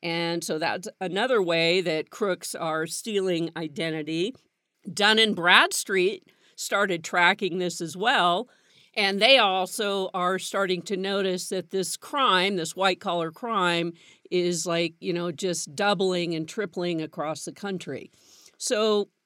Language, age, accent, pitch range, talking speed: English, 50-69, American, 175-225 Hz, 135 wpm